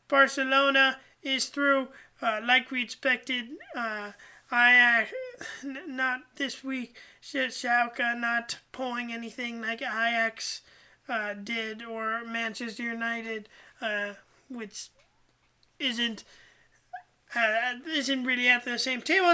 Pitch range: 230-265 Hz